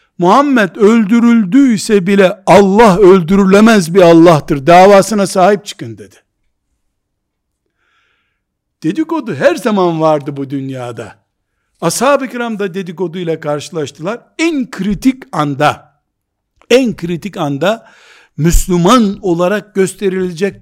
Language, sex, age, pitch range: Turkish, male, 60-79, 160-215 Hz